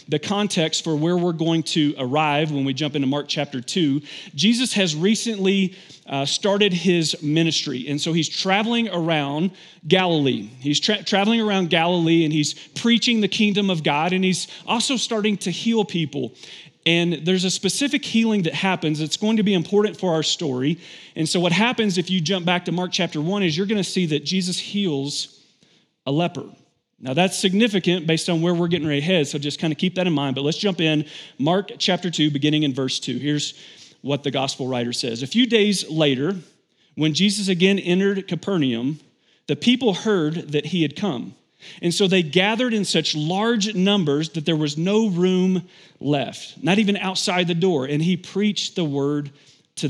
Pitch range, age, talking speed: 150-195 Hz, 40-59, 190 wpm